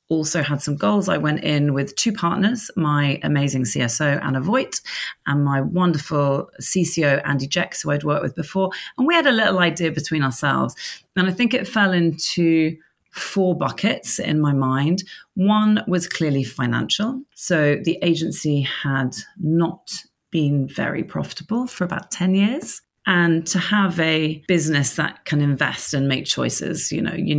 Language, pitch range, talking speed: English, 140-185 Hz, 165 wpm